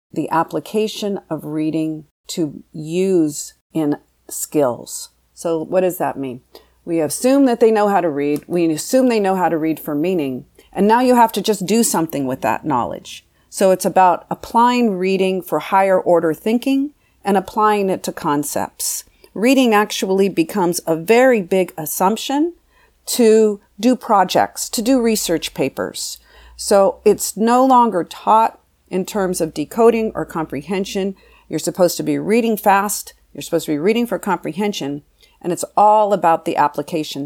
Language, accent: English, American